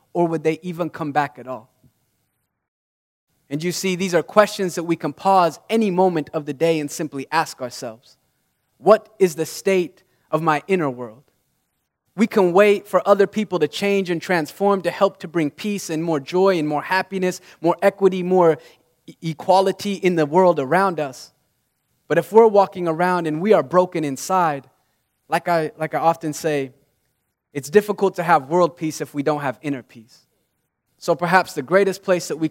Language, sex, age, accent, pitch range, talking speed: English, male, 20-39, American, 150-195 Hz, 185 wpm